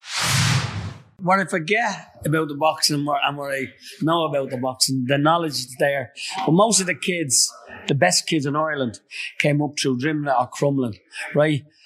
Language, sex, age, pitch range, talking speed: English, male, 30-49, 130-155 Hz, 170 wpm